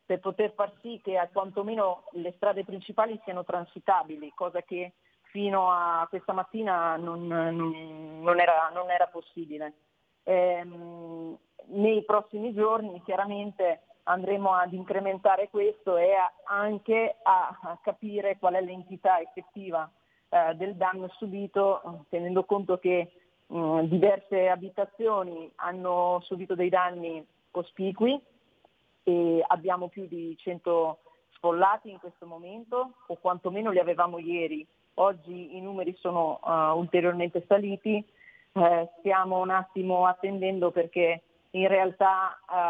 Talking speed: 125 wpm